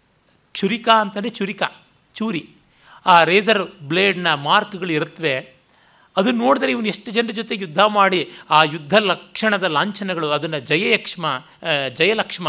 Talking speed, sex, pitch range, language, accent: 115 wpm, male, 160-205 Hz, Kannada, native